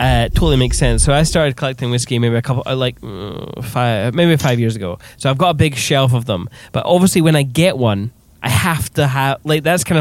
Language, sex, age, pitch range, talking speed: English, male, 10-29, 120-145 Hz, 235 wpm